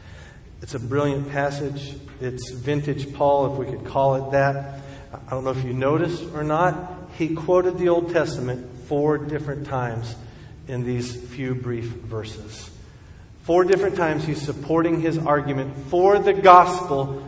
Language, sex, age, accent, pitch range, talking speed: English, male, 50-69, American, 125-155 Hz, 155 wpm